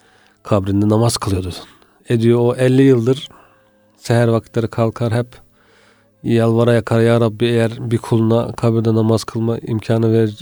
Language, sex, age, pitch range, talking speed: Turkish, male, 40-59, 105-120 Hz, 130 wpm